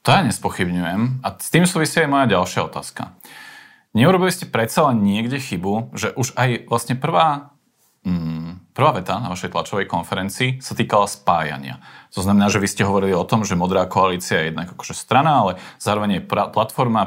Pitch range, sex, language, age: 95-120 Hz, male, Slovak, 40-59